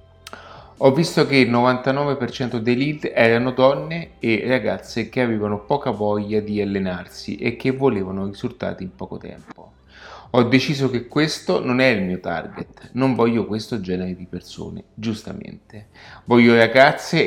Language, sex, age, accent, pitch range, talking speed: Italian, male, 30-49, native, 105-135 Hz, 145 wpm